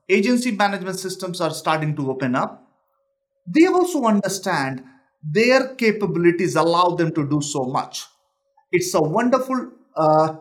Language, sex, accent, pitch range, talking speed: English, male, Indian, 145-210 Hz, 135 wpm